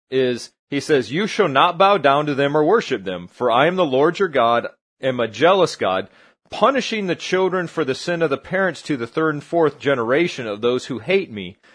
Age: 30-49